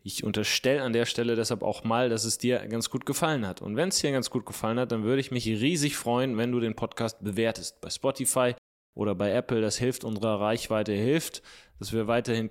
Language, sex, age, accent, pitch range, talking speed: German, male, 20-39, German, 105-125 Hz, 225 wpm